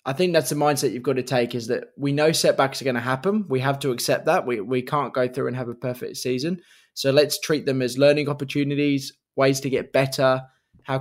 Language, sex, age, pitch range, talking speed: English, male, 20-39, 130-160 Hz, 245 wpm